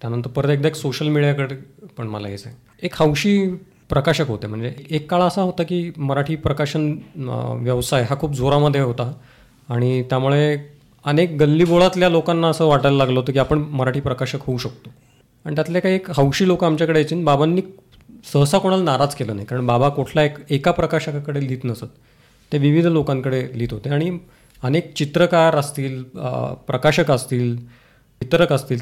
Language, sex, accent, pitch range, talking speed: Marathi, male, native, 125-155 Hz, 160 wpm